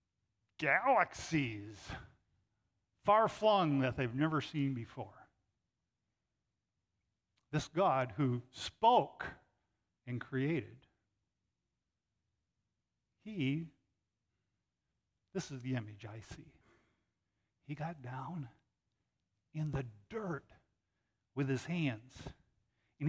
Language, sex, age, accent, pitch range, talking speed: English, male, 50-69, American, 110-155 Hz, 80 wpm